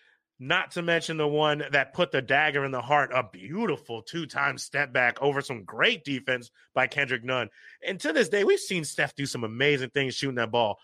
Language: English